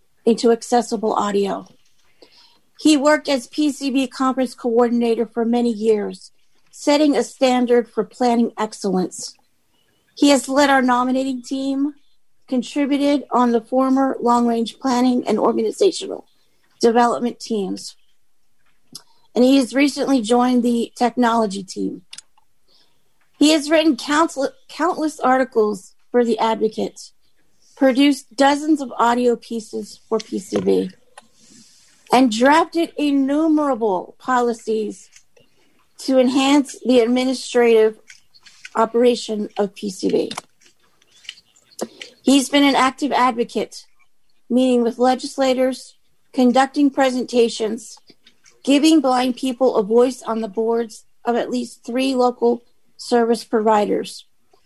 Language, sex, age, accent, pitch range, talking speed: English, female, 40-59, American, 230-270 Hz, 105 wpm